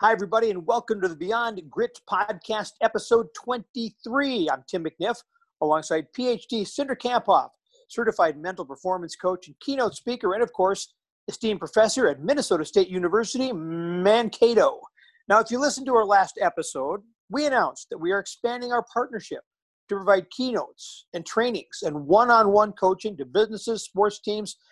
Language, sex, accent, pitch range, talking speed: English, male, American, 185-245 Hz, 155 wpm